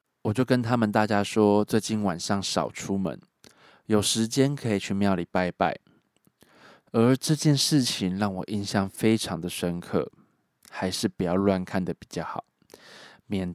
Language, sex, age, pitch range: Chinese, male, 20-39, 90-115 Hz